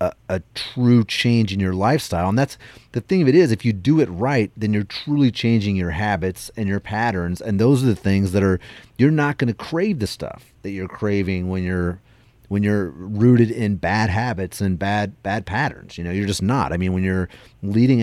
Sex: male